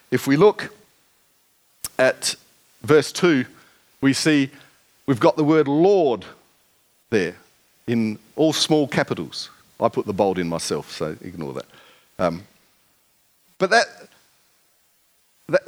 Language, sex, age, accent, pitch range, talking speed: English, male, 50-69, Australian, 120-155 Hz, 120 wpm